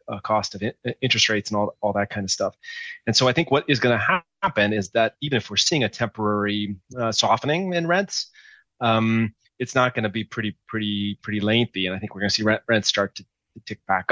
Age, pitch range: 30-49, 100-115 Hz